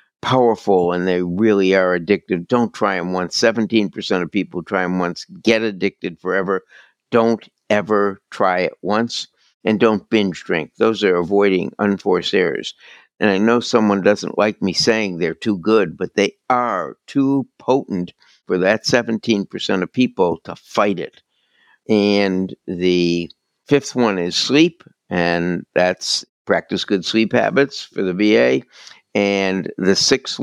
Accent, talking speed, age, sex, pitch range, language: American, 150 wpm, 60-79, male, 95-115 Hz, English